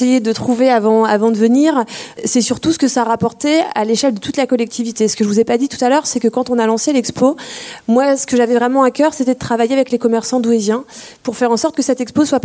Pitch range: 220-260 Hz